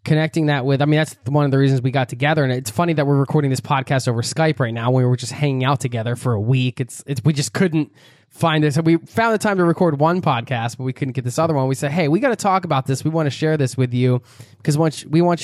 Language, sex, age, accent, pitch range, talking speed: English, male, 20-39, American, 130-160 Hz, 305 wpm